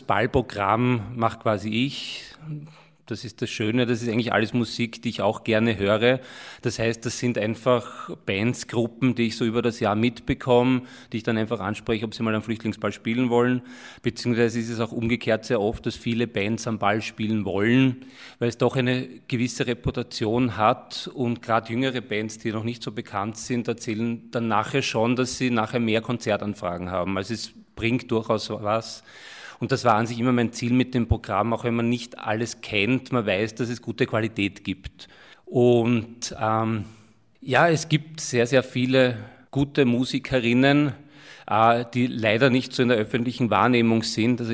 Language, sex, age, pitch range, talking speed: German, male, 30-49, 110-125 Hz, 180 wpm